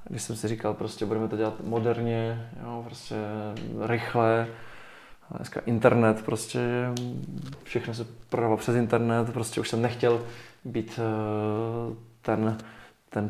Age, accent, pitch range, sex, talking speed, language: 20-39, native, 110-120 Hz, male, 120 wpm, Czech